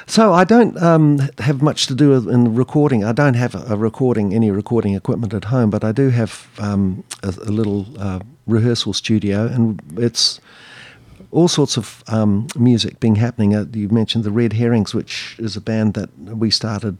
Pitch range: 110-130 Hz